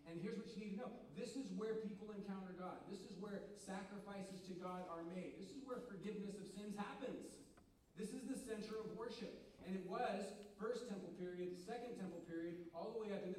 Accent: American